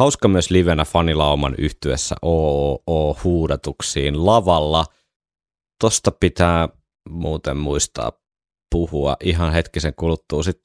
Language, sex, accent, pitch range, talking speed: Finnish, male, native, 75-90 Hz, 90 wpm